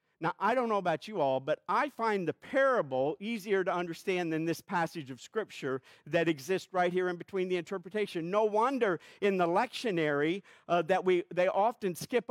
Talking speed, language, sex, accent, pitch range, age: 190 wpm, English, male, American, 175-230 Hz, 50-69